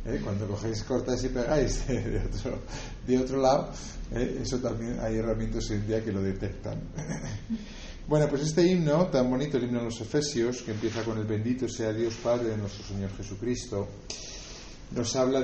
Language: Spanish